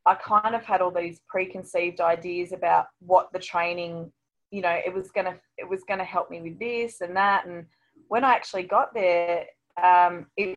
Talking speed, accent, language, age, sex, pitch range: 205 wpm, Australian, English, 20-39, female, 175-200 Hz